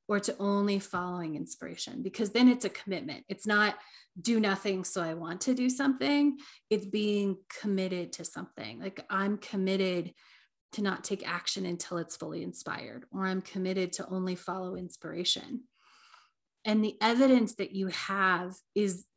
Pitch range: 190-230 Hz